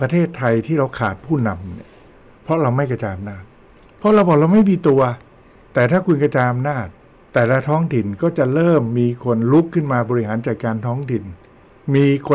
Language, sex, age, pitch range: Thai, male, 60-79, 115-155 Hz